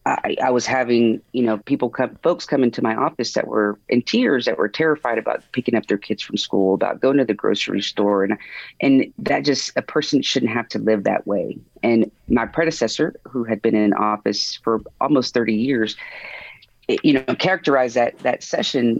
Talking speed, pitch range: 200 wpm, 105-130 Hz